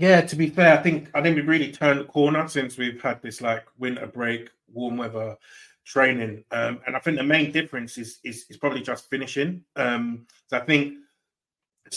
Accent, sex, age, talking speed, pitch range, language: British, male, 30-49, 205 wpm, 115-135 Hz, English